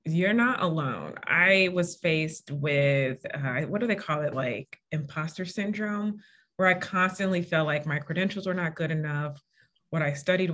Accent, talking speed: American, 170 wpm